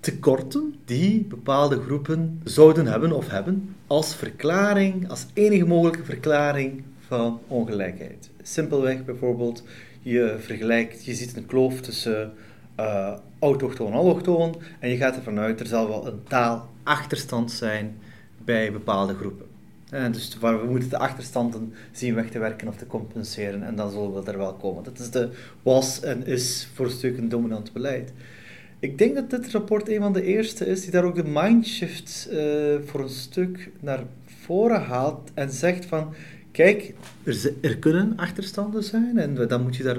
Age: 30-49